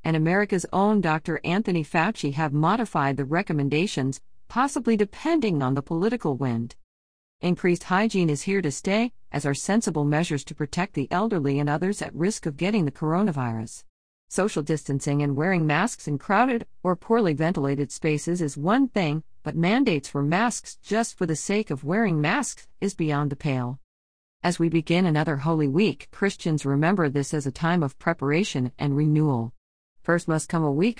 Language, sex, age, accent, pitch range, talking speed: English, female, 40-59, American, 145-190 Hz, 170 wpm